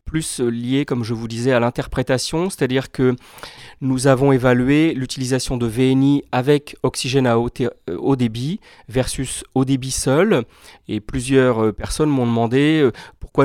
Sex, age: male, 30-49